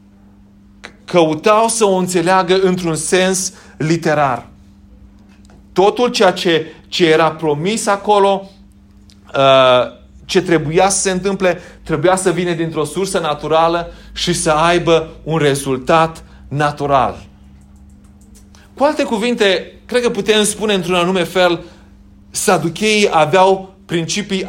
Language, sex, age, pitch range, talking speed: Romanian, male, 30-49, 110-185 Hz, 110 wpm